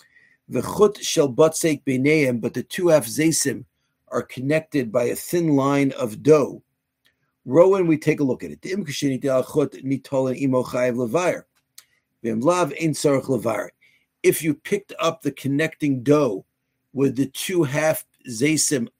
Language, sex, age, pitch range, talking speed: English, male, 50-69, 135-165 Hz, 110 wpm